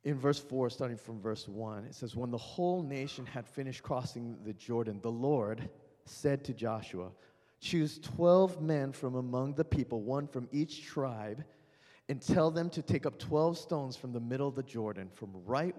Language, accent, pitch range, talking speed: English, American, 115-150 Hz, 190 wpm